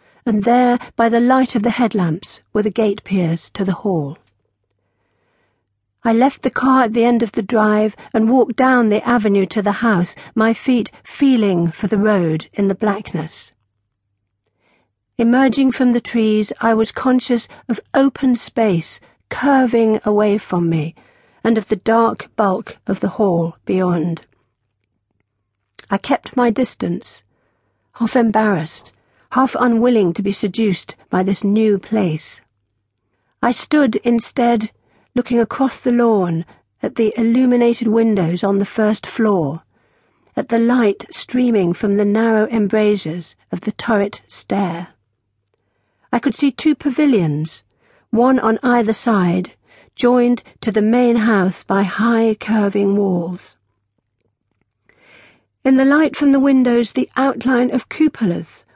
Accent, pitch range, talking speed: British, 170-240 Hz, 135 wpm